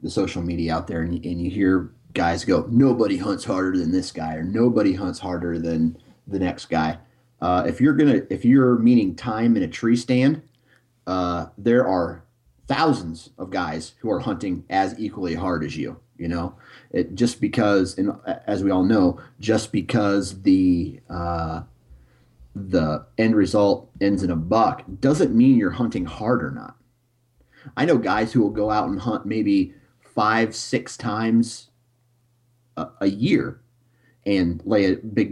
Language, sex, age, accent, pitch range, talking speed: English, male, 30-49, American, 90-120 Hz, 170 wpm